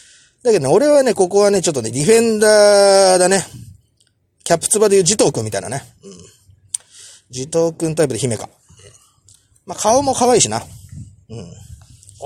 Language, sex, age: Japanese, male, 30-49